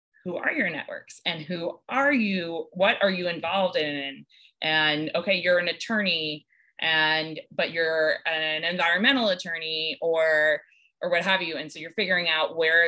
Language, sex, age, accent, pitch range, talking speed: English, female, 20-39, American, 155-190 Hz, 165 wpm